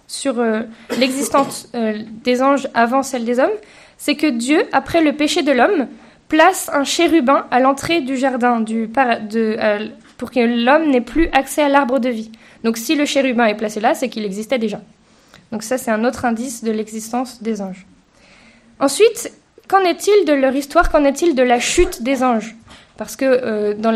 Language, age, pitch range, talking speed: French, 20-39, 230-300 Hz, 190 wpm